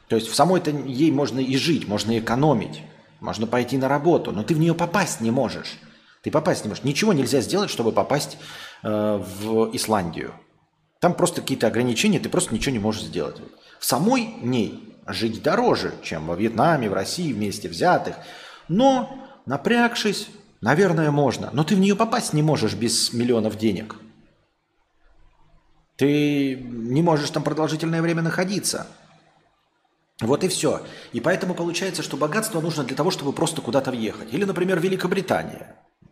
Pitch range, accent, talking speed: 110-165 Hz, native, 160 wpm